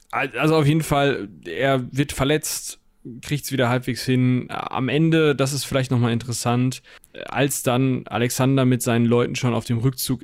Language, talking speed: German, 175 wpm